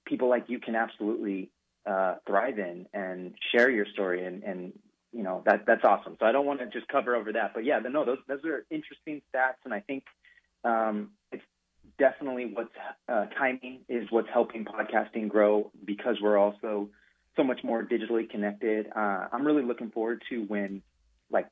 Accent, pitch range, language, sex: American, 100-115 Hz, English, male